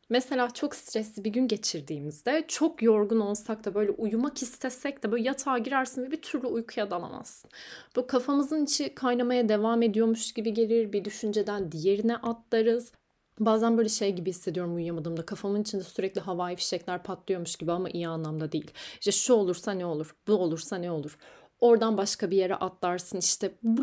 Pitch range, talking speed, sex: 185-230 Hz, 170 wpm, female